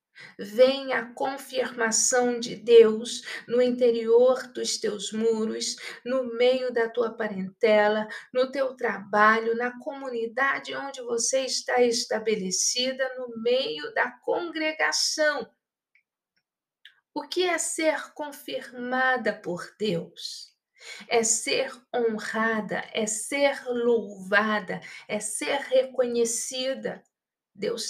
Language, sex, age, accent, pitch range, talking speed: Portuguese, female, 50-69, Brazilian, 225-275 Hz, 95 wpm